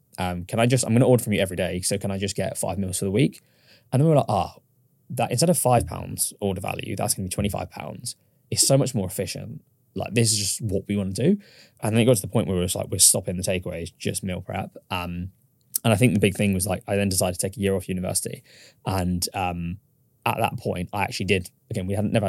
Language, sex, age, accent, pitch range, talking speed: English, male, 10-29, British, 95-115 Hz, 275 wpm